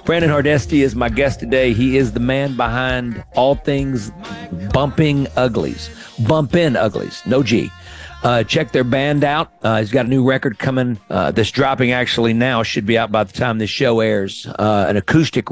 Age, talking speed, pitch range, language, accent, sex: 50-69, 190 wpm, 105-135 Hz, English, American, male